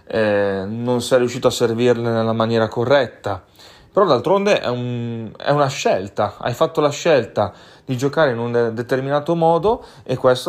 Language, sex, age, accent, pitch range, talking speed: Italian, male, 30-49, native, 110-130 Hz, 165 wpm